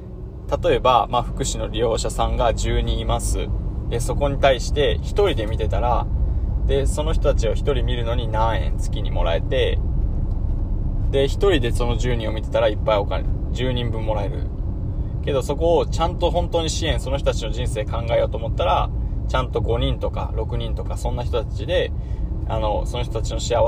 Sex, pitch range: male, 100-130 Hz